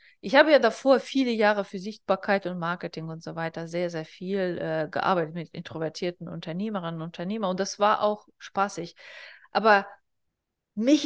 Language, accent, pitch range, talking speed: German, German, 170-205 Hz, 165 wpm